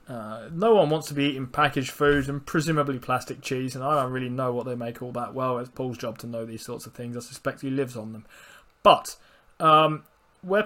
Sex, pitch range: male, 130-165 Hz